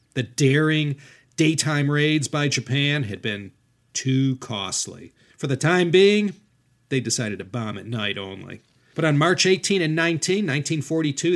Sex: male